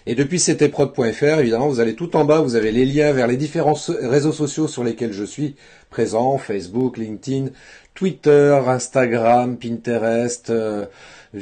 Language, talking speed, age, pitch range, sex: French, 160 wpm, 40-59, 110-140 Hz, male